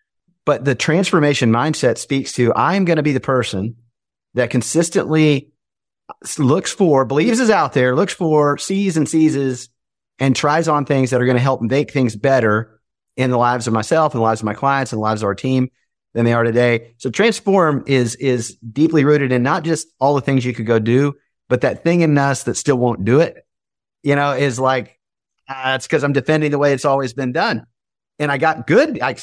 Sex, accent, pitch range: male, American, 120-150 Hz